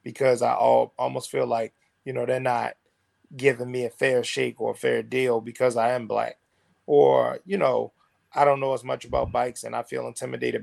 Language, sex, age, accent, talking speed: English, male, 20-39, American, 205 wpm